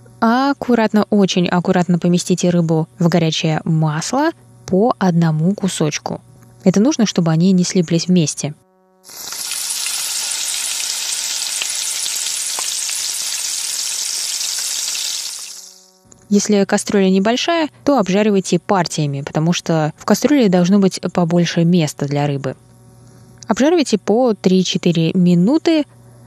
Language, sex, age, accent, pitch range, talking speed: Russian, female, 20-39, native, 165-210 Hz, 85 wpm